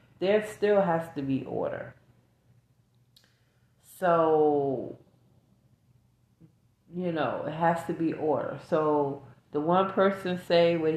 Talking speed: 110 wpm